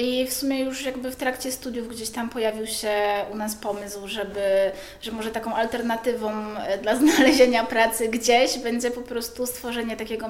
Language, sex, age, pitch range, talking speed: Polish, female, 20-39, 210-240 Hz, 155 wpm